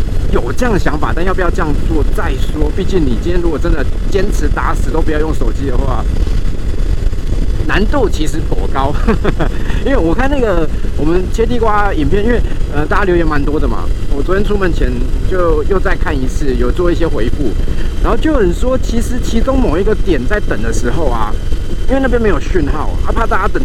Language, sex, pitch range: Chinese, male, 85-145 Hz